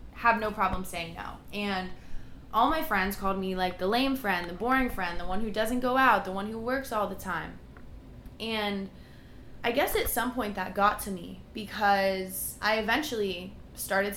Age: 20-39